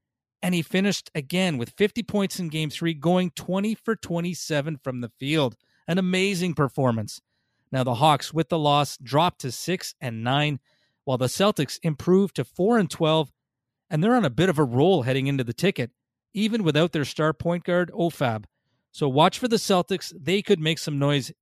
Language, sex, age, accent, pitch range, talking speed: English, male, 40-59, American, 135-175 Hz, 190 wpm